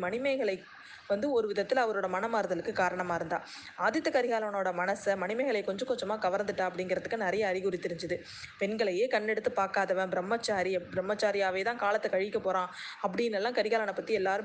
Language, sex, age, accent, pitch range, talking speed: Tamil, female, 20-39, native, 195-265 Hz, 45 wpm